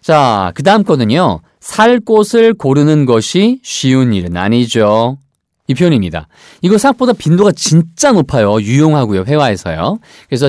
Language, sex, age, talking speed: English, male, 40-59, 120 wpm